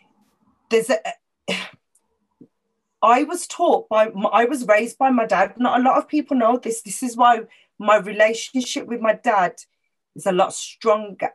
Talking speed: 165 wpm